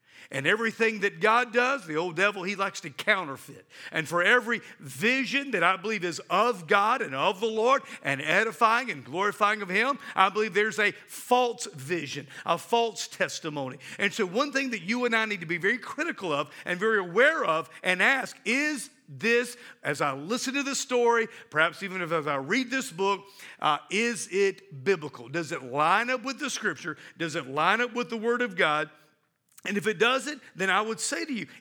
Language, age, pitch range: English, 50-69, 180-240 Hz